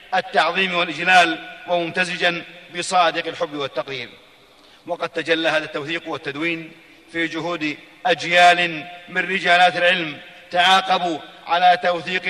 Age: 40-59